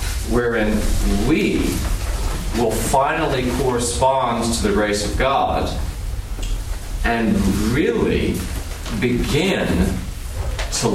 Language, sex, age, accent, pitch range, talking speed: English, male, 40-59, American, 90-120 Hz, 75 wpm